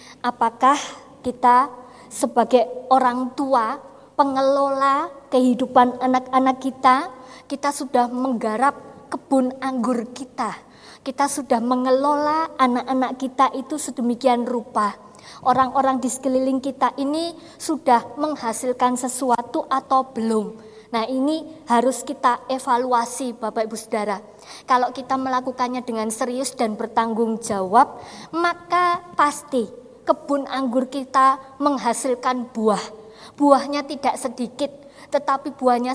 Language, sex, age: Indonesian, male, 20-39